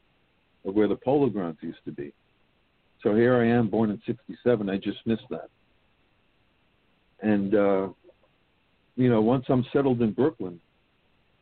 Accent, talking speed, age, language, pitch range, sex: American, 145 wpm, 60-79, English, 90-110 Hz, male